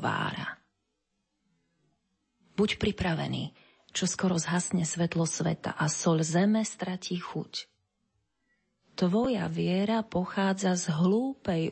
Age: 30-49